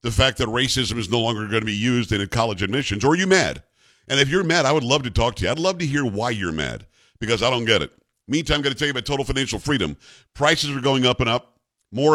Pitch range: 115-145 Hz